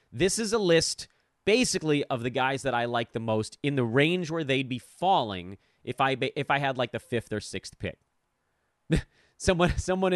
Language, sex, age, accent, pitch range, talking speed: English, male, 30-49, American, 110-160 Hz, 200 wpm